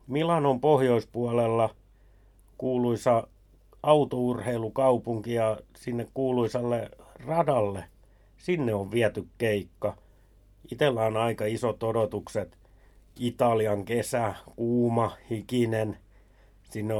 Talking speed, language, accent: 80 wpm, Finnish, native